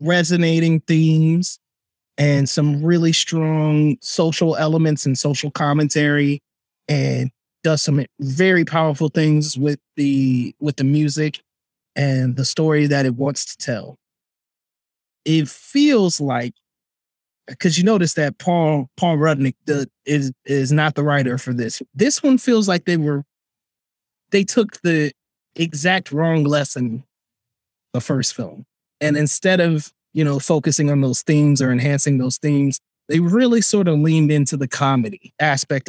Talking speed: 140 wpm